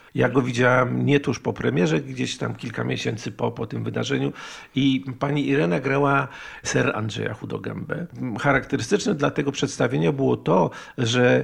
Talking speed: 150 wpm